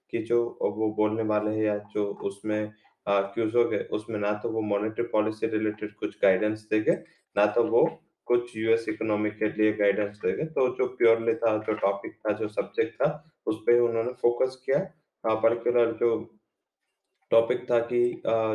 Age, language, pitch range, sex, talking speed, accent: 20-39, English, 105-120 Hz, male, 170 wpm, Indian